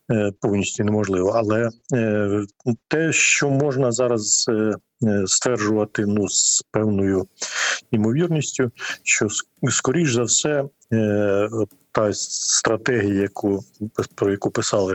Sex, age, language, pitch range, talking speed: male, 50-69, Ukrainian, 100-125 Hz, 90 wpm